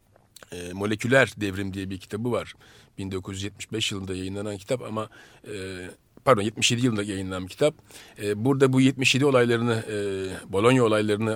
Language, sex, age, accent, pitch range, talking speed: Turkish, male, 40-59, native, 105-135 Hz, 145 wpm